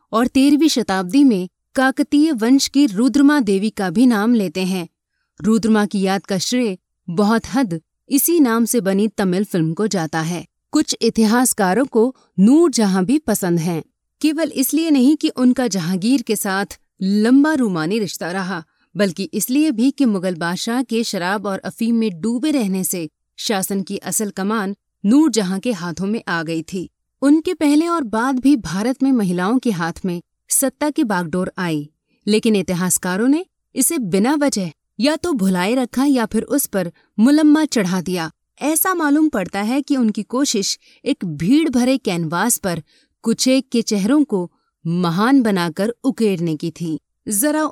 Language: Hindi